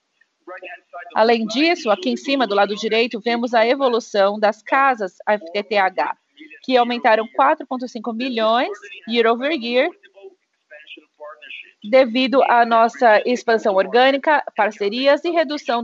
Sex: female